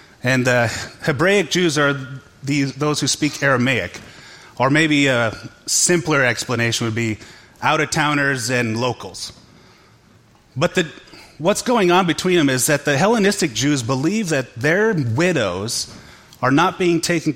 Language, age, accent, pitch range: English, 30-49, American, 115-160 Hz